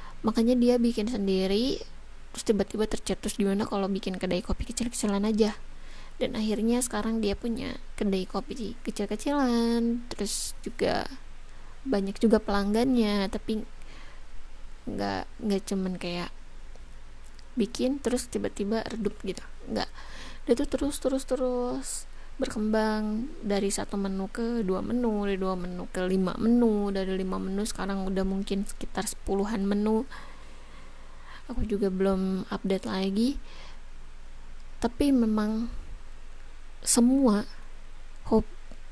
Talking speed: 115 wpm